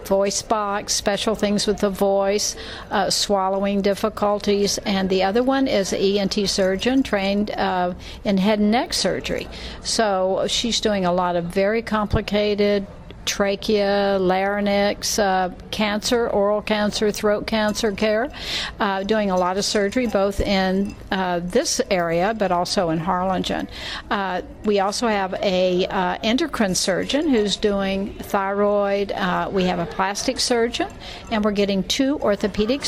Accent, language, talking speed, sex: American, English, 140 wpm, female